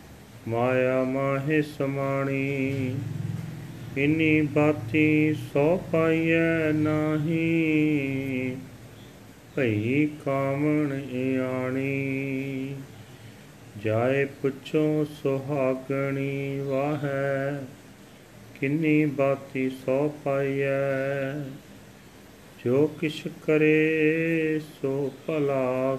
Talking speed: 55 wpm